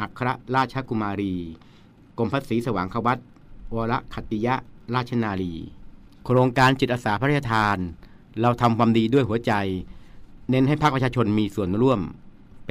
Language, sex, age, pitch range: Thai, male, 60-79, 105-125 Hz